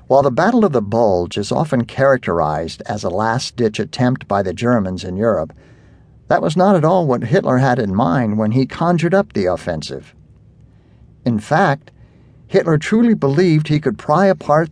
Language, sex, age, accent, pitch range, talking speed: English, male, 50-69, American, 115-150 Hz, 175 wpm